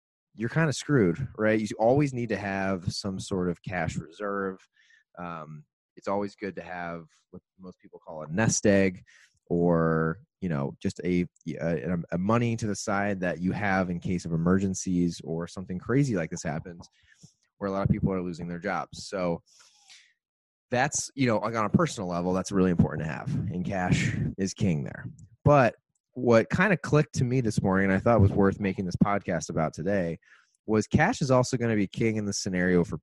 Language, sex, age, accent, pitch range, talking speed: English, male, 20-39, American, 85-115 Hz, 200 wpm